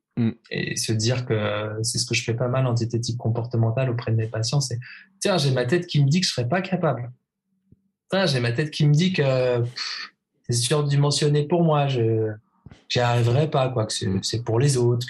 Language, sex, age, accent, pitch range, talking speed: French, male, 20-39, French, 110-130 Hz, 220 wpm